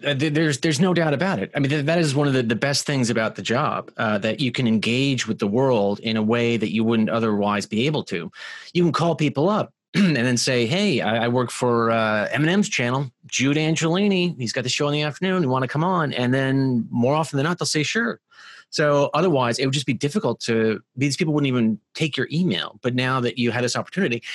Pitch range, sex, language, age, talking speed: 120-155 Hz, male, English, 30-49, 245 wpm